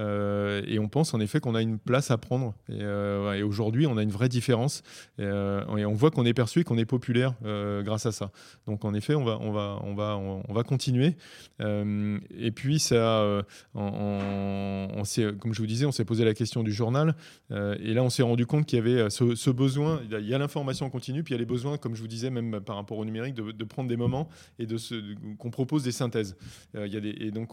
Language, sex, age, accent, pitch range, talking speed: French, male, 20-39, French, 105-125 Hz, 270 wpm